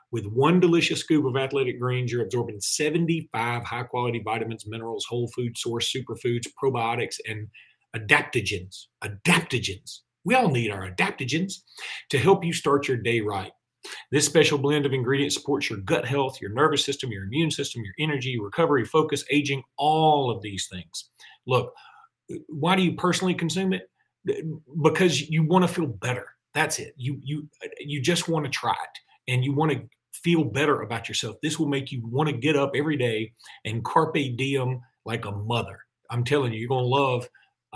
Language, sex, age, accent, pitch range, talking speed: English, male, 40-59, American, 120-150 Hz, 175 wpm